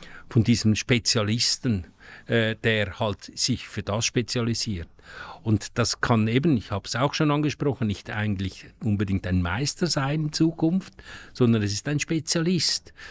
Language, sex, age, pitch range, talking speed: German, male, 50-69, 110-145 Hz, 150 wpm